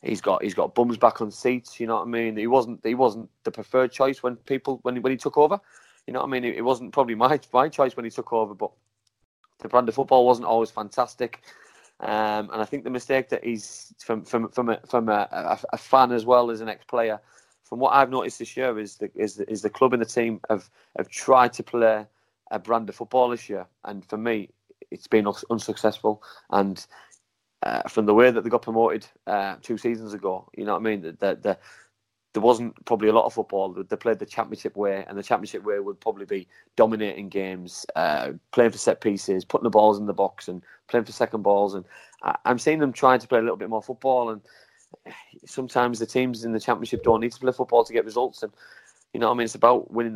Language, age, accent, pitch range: English, 30-49, British, 105-125 Hz